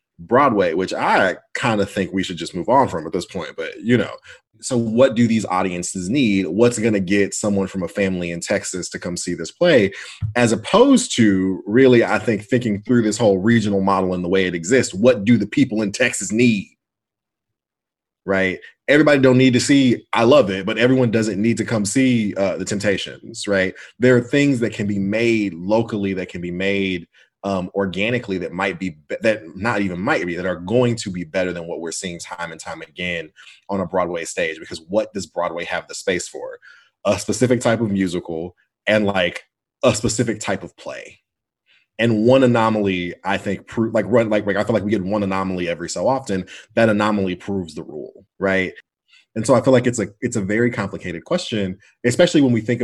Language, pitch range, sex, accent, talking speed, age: English, 95-120 Hz, male, American, 210 wpm, 30-49